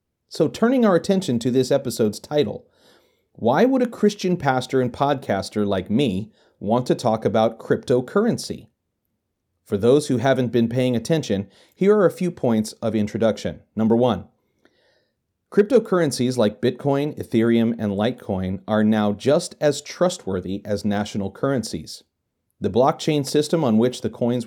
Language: English